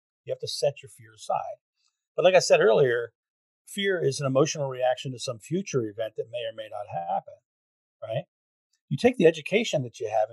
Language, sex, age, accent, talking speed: English, male, 40-59, American, 205 wpm